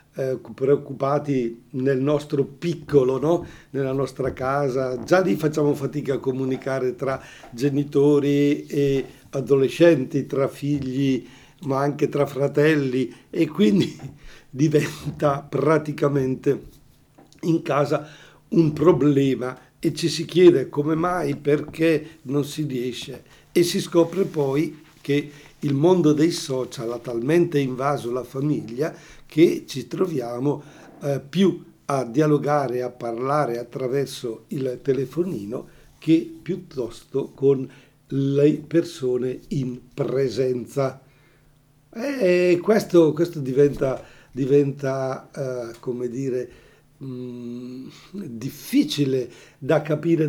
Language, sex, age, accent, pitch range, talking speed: Italian, male, 50-69, native, 135-155 Hz, 100 wpm